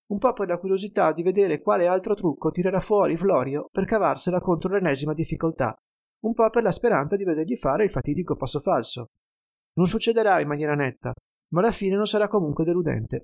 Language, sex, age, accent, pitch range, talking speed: Italian, male, 30-49, native, 145-190 Hz, 190 wpm